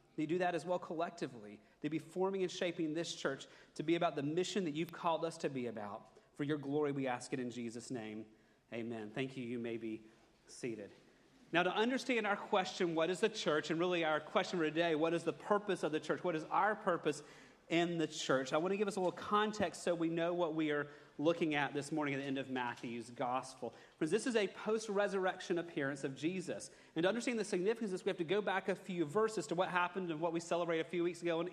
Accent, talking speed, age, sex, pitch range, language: American, 245 wpm, 40-59, male, 150-190 Hz, English